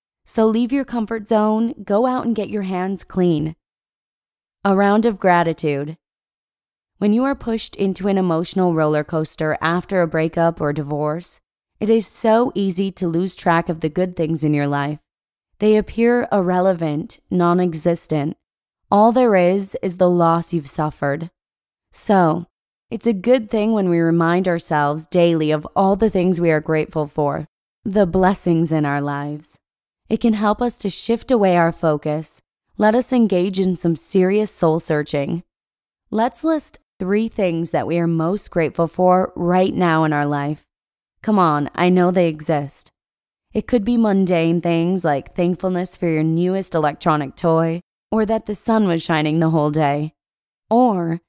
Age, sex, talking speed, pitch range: 20-39, female, 165 wpm, 160-205 Hz